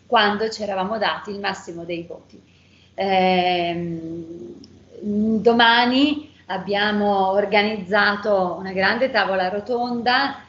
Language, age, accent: Italian, 40-59, native